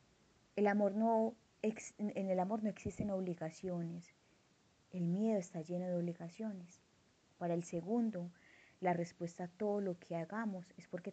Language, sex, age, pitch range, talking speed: Spanish, female, 30-49, 170-195 Hz, 130 wpm